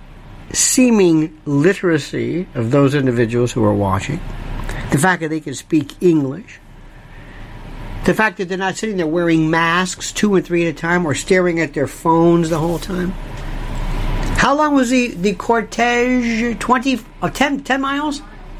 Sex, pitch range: male, 145-240 Hz